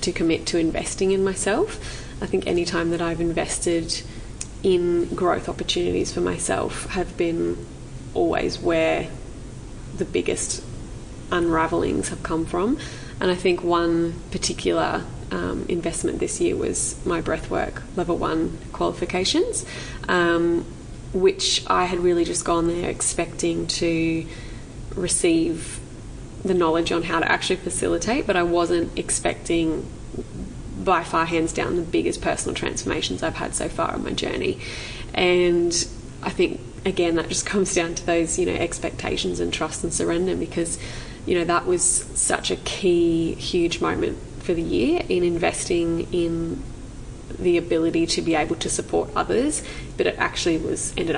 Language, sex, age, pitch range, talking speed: English, female, 20-39, 160-180 Hz, 150 wpm